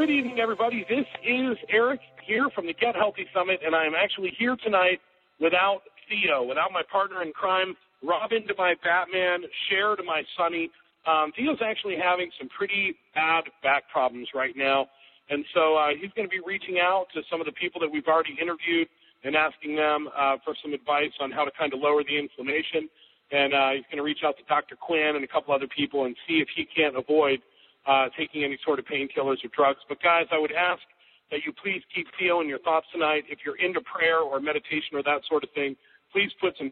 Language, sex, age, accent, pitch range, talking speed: English, male, 40-59, American, 145-190 Hz, 215 wpm